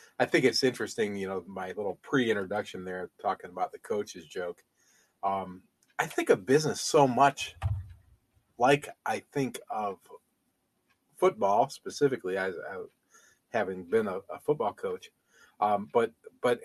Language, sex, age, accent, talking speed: English, male, 40-59, American, 140 wpm